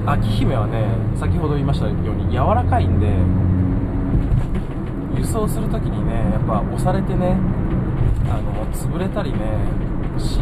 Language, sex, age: Japanese, male, 20-39